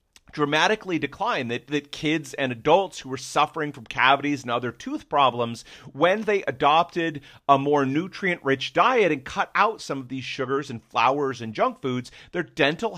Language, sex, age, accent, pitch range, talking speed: English, male, 40-59, American, 120-155 Hz, 170 wpm